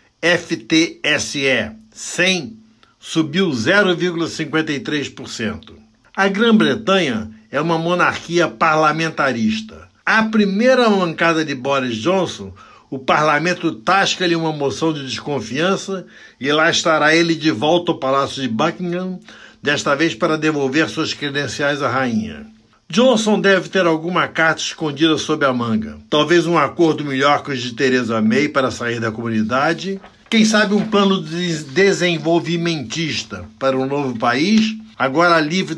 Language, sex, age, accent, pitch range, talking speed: Portuguese, male, 60-79, Brazilian, 135-180 Hz, 125 wpm